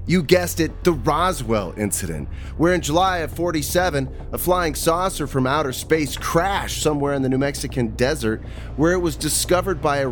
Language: English